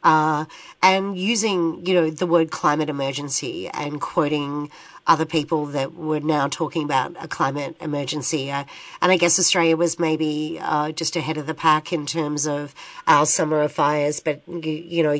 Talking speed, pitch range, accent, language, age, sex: 175 wpm, 150-175 Hz, Australian, English, 40-59, female